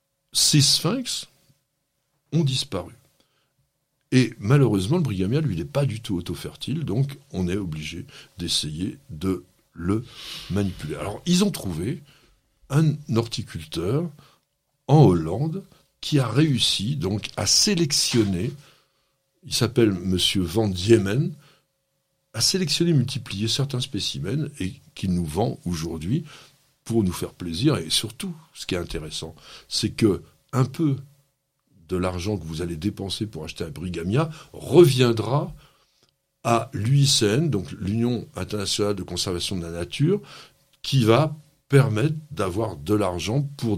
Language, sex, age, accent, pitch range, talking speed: French, male, 60-79, French, 95-140 Hz, 125 wpm